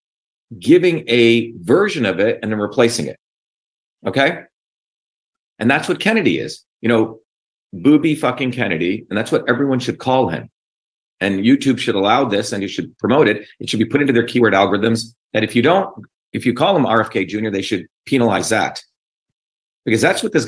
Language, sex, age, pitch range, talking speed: English, male, 40-59, 100-125 Hz, 185 wpm